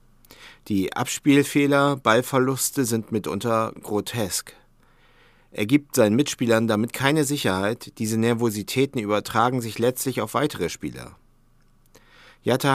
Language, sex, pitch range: German, male, 110-130 Hz